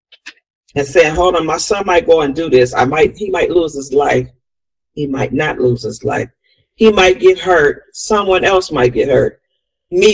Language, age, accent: English, 40-59, American